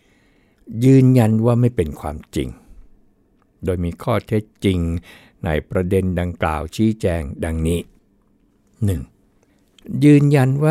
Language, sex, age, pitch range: Thai, male, 60-79, 85-110 Hz